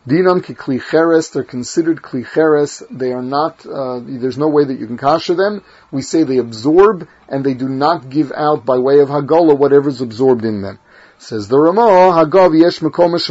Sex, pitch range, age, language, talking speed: male, 130-165 Hz, 40-59, English, 190 wpm